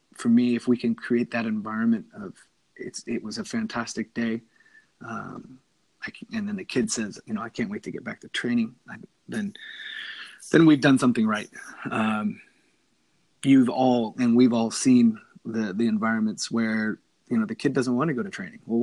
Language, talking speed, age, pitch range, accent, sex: English, 200 wpm, 30-49, 115-165 Hz, American, male